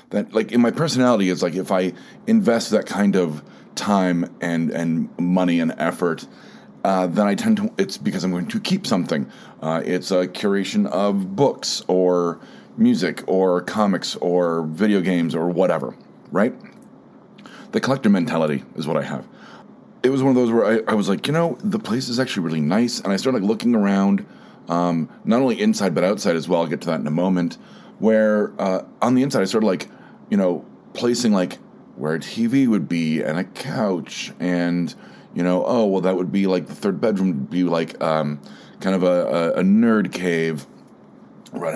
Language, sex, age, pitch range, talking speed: English, male, 30-49, 90-135 Hz, 200 wpm